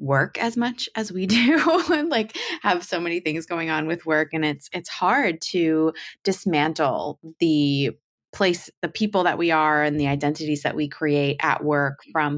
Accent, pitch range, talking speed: American, 150-180 Hz, 185 wpm